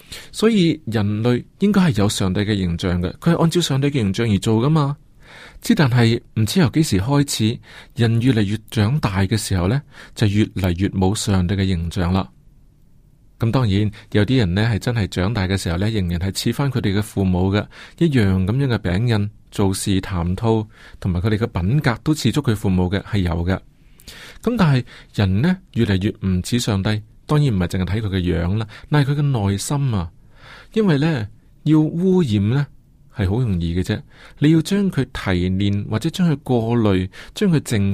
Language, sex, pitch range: Chinese, male, 100-140 Hz